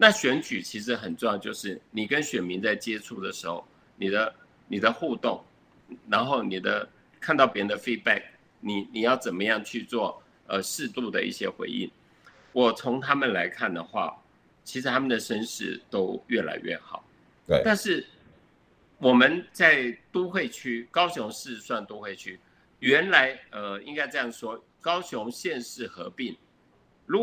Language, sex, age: Chinese, male, 50-69